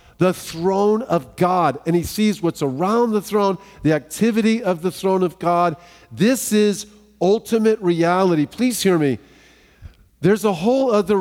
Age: 50-69